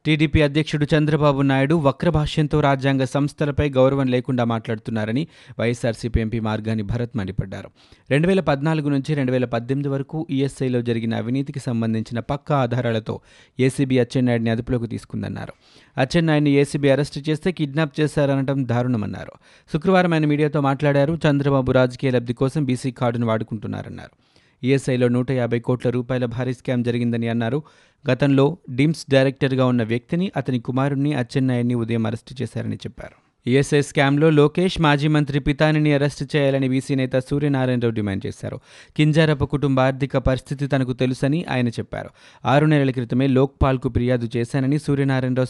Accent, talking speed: native, 130 wpm